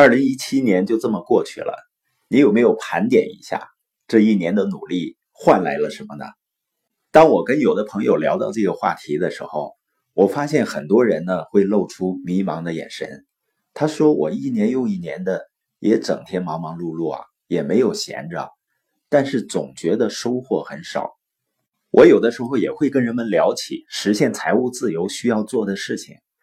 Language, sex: Chinese, male